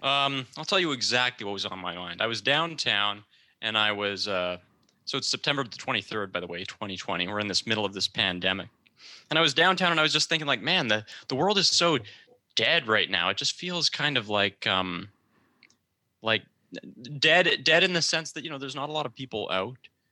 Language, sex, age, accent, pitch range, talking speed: English, male, 20-39, American, 105-140 Hz, 225 wpm